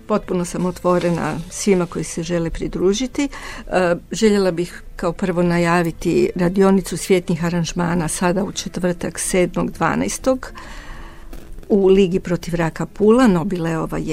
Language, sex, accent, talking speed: Croatian, female, native, 110 wpm